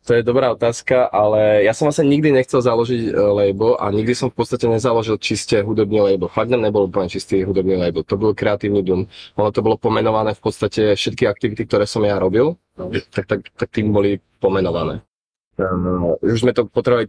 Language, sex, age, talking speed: Czech, male, 20-39, 180 wpm